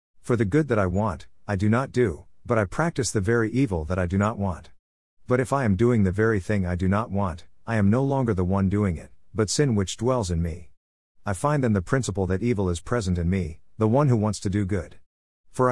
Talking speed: 250 wpm